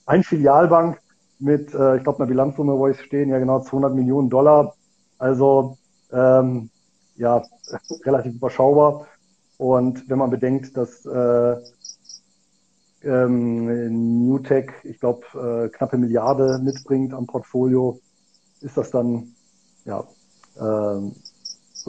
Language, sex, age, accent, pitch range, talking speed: German, male, 40-59, German, 125-145 Hz, 120 wpm